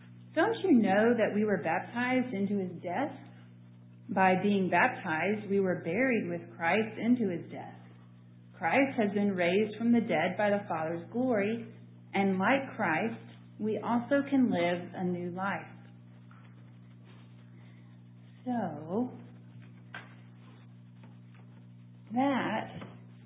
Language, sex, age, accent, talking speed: English, female, 40-59, American, 115 wpm